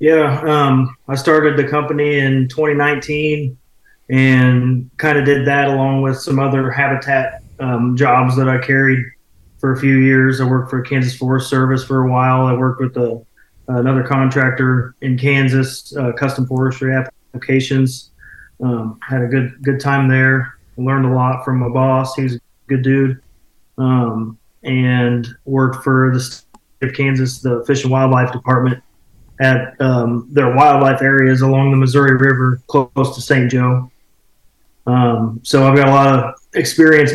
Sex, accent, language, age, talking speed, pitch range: male, American, English, 30-49, 160 wpm, 125-140 Hz